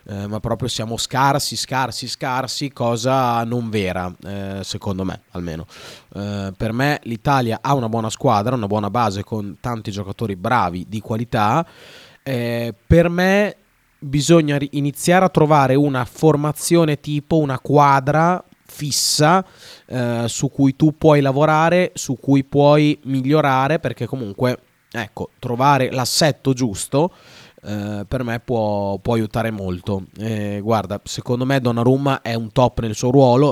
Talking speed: 130 wpm